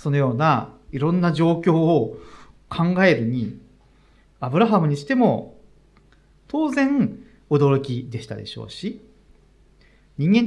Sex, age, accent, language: male, 40-59, native, Japanese